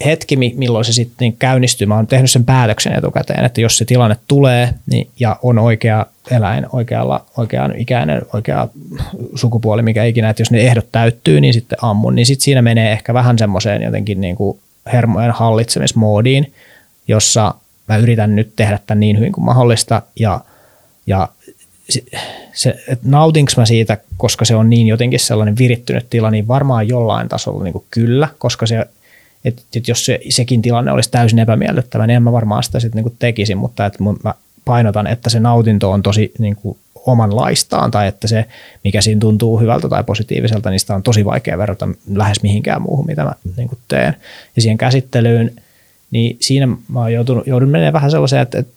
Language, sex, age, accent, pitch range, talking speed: Finnish, male, 30-49, native, 110-125 Hz, 180 wpm